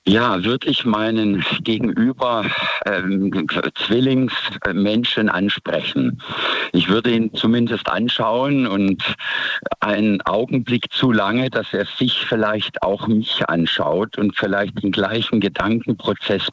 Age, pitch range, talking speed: 50-69, 90-110 Hz, 110 wpm